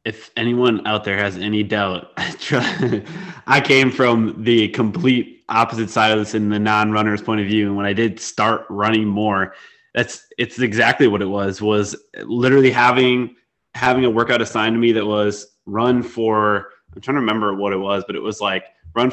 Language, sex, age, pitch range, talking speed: English, male, 20-39, 105-120 Hz, 195 wpm